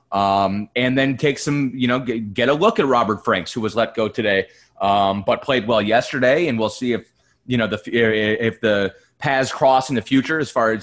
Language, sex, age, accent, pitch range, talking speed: English, male, 30-49, American, 110-135 Hz, 225 wpm